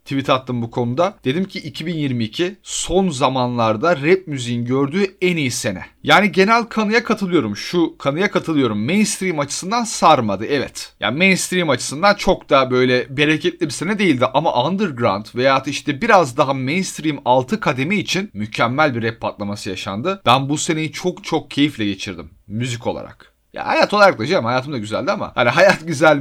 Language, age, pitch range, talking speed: Turkish, 40-59, 125-180 Hz, 165 wpm